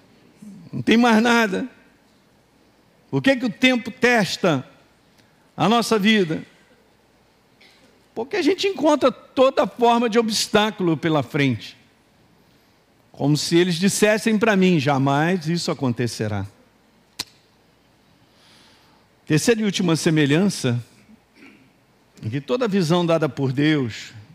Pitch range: 135-210 Hz